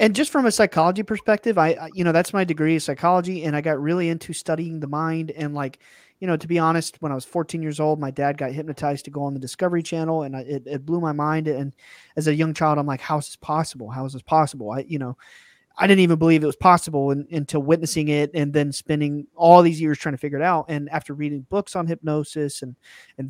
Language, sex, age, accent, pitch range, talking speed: English, male, 20-39, American, 150-170 Hz, 260 wpm